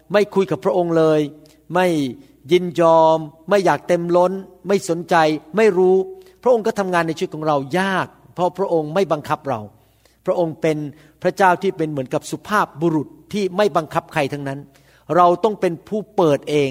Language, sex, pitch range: Thai, male, 150-185 Hz